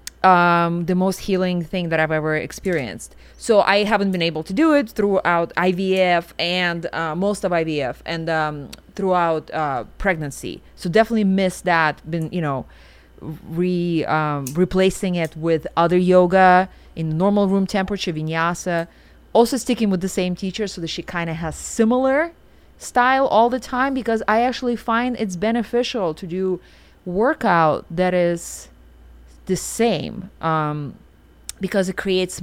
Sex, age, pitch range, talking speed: female, 30-49, 155-190 Hz, 150 wpm